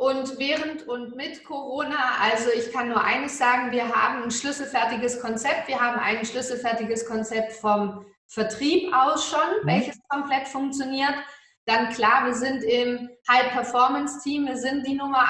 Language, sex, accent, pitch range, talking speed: German, female, German, 230-275 Hz, 150 wpm